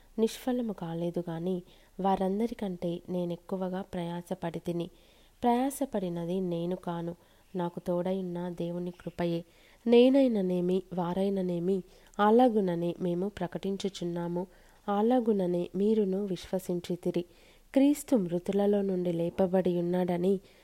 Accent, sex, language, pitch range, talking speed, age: native, female, Telugu, 175-205 Hz, 80 wpm, 20-39